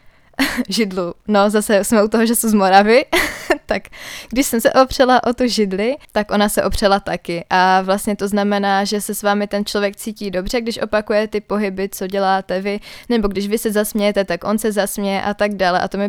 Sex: female